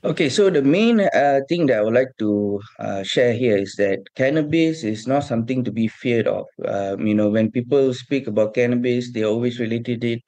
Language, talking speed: English, 210 wpm